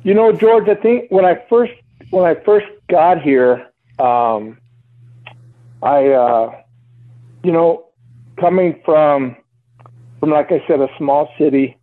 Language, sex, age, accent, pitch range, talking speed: English, male, 50-69, American, 120-165 Hz, 135 wpm